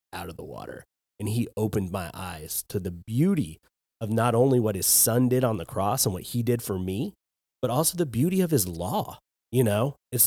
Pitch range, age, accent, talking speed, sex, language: 105-145 Hz, 30-49, American, 220 wpm, male, English